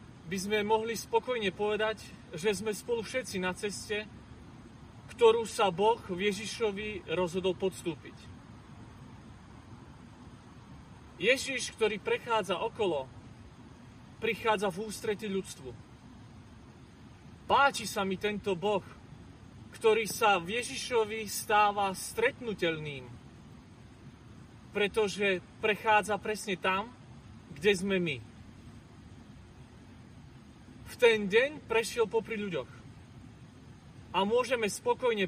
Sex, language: male, Slovak